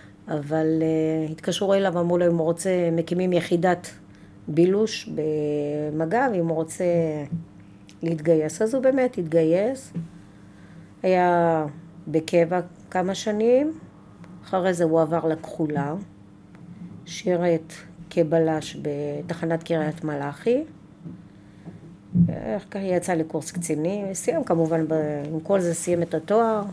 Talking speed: 110 wpm